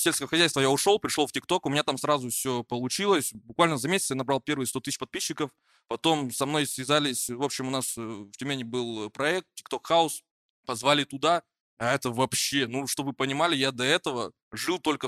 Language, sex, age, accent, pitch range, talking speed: Russian, male, 20-39, native, 130-165 Hz, 200 wpm